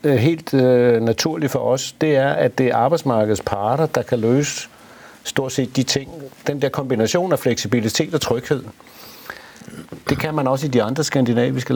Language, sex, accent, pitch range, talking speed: Danish, male, native, 115-150 Hz, 170 wpm